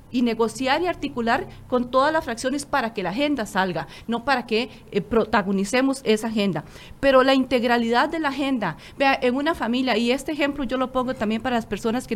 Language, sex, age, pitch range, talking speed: Spanish, female, 40-59, 235-310 Hz, 200 wpm